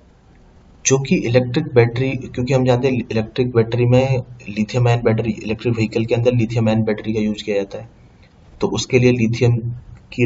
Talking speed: 170 wpm